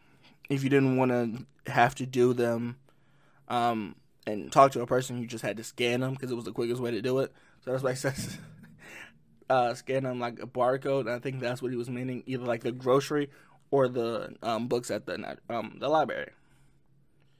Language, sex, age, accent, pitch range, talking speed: English, male, 20-39, American, 125-150 Hz, 210 wpm